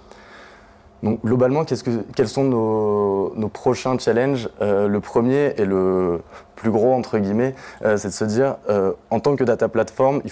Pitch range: 100-120 Hz